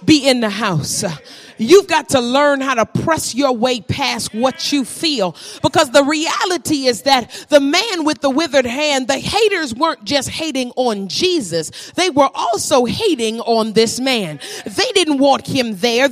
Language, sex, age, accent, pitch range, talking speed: English, female, 30-49, American, 270-390 Hz, 175 wpm